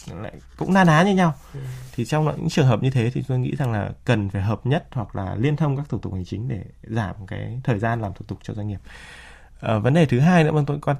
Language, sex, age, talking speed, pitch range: Vietnamese, male, 20-39, 280 wpm, 105-140 Hz